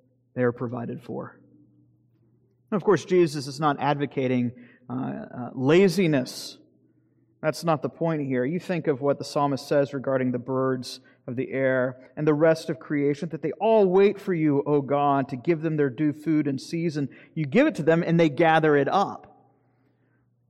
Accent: American